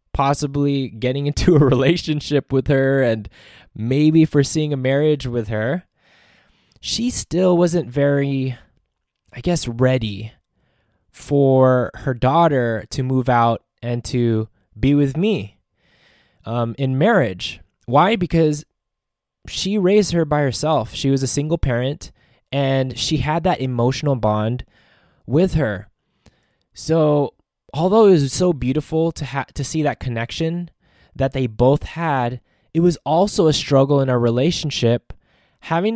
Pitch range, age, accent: 125-160 Hz, 20-39, American